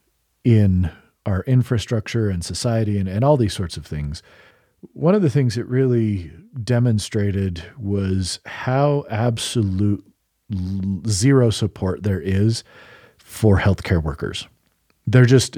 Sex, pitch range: male, 100-120 Hz